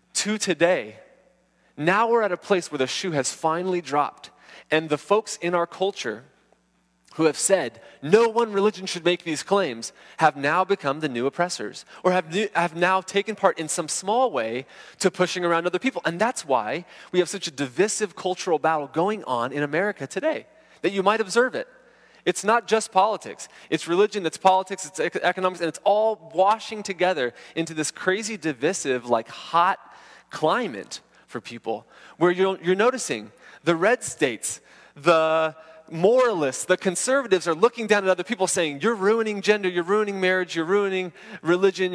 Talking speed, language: 175 wpm, English